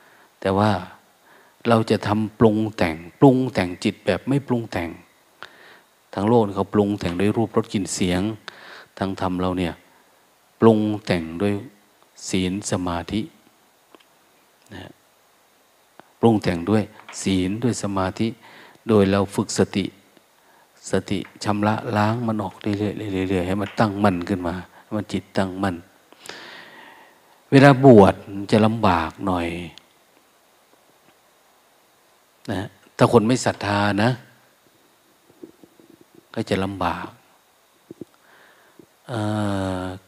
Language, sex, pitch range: Thai, male, 95-110 Hz